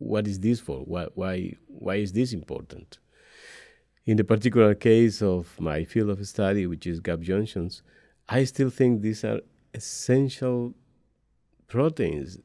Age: 50-69